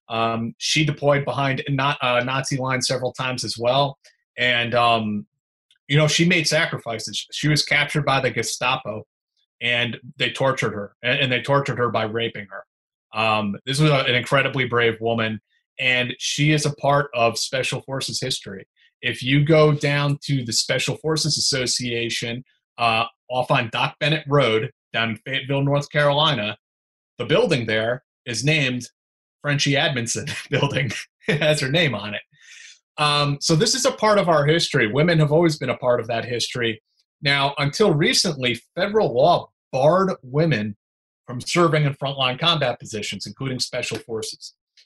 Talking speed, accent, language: 160 wpm, American, English